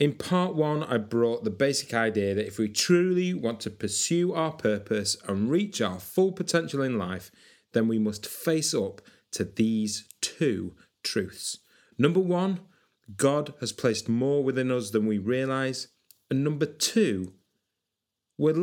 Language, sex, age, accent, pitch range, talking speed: English, male, 30-49, British, 105-165 Hz, 155 wpm